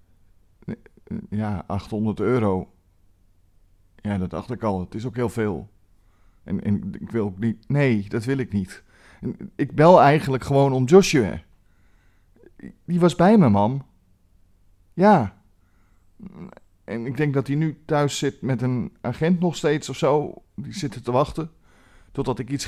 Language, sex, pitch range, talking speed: Dutch, male, 90-150 Hz, 155 wpm